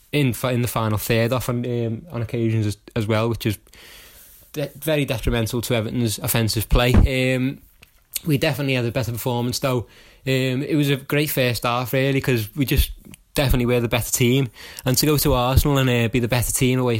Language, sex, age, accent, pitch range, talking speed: English, male, 20-39, British, 115-125 Hz, 205 wpm